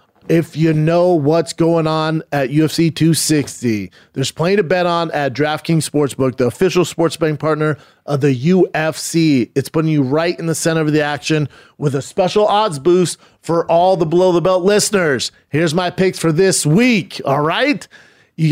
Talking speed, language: 180 wpm, English